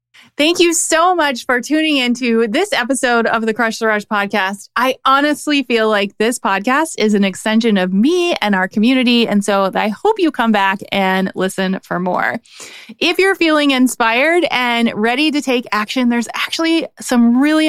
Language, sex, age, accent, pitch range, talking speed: English, female, 30-49, American, 210-280 Hz, 180 wpm